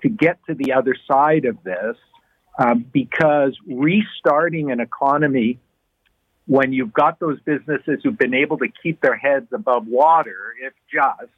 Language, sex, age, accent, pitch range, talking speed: English, male, 50-69, American, 130-160 Hz, 150 wpm